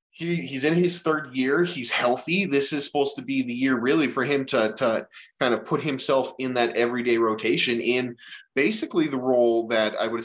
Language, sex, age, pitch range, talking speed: English, male, 20-39, 110-130 Hz, 200 wpm